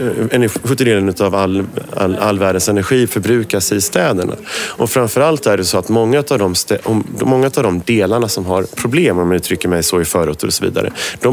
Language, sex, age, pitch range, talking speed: Swedish, male, 30-49, 95-125 Hz, 205 wpm